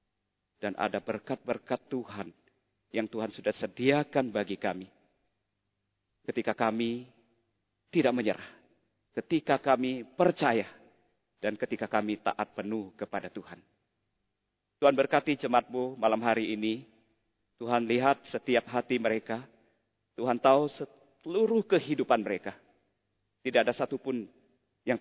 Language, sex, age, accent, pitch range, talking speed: Indonesian, male, 40-59, native, 100-125 Hz, 105 wpm